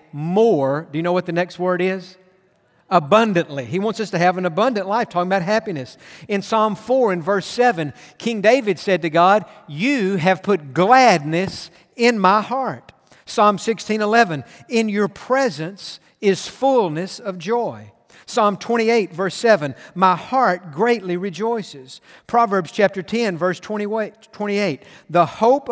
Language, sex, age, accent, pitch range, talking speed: English, male, 50-69, American, 175-230 Hz, 145 wpm